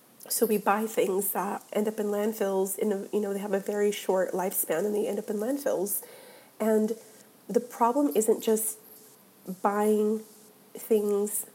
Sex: female